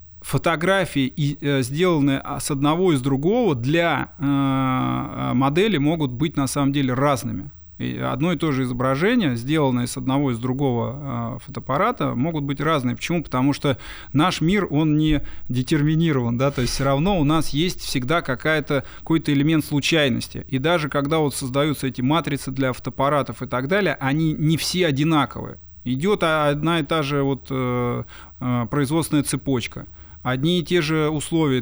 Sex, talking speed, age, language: male, 145 wpm, 20-39, Russian